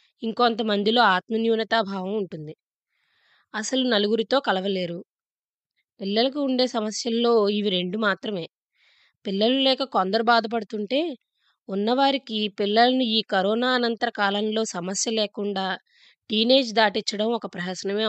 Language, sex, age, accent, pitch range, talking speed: Telugu, female, 20-39, native, 195-235 Hz, 90 wpm